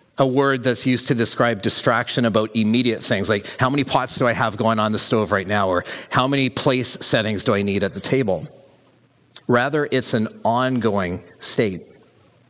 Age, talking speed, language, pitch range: 40-59, 185 wpm, English, 110-135 Hz